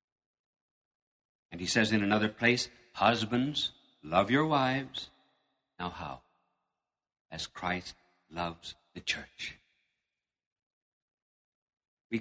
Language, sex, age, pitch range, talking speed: English, male, 60-79, 105-150 Hz, 90 wpm